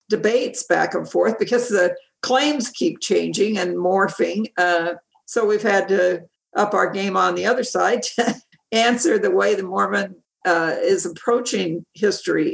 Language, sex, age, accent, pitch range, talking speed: English, female, 60-79, American, 195-255 Hz, 160 wpm